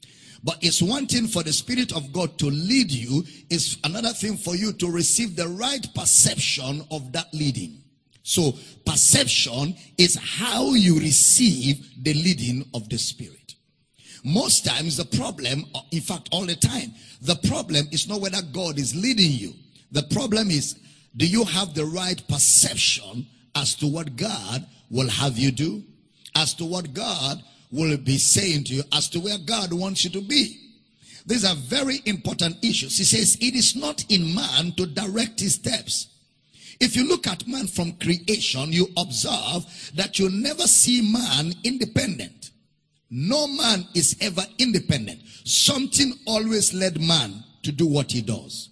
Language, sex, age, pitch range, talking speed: English, male, 50-69, 145-210 Hz, 165 wpm